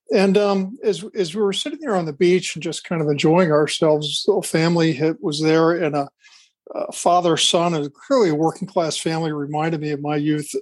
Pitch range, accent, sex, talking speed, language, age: 150-190 Hz, American, male, 220 wpm, English, 50-69